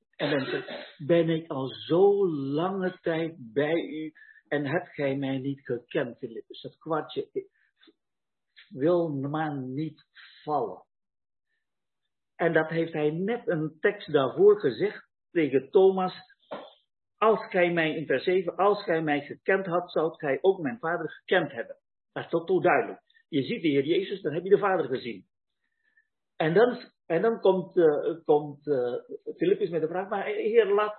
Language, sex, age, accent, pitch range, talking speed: Dutch, male, 50-69, Dutch, 155-245 Hz, 155 wpm